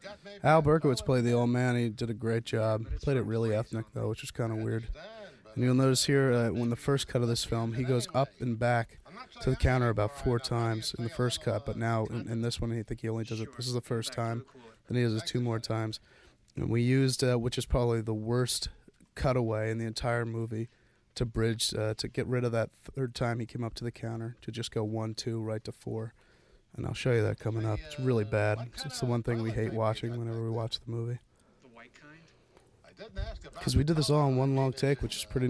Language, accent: English, American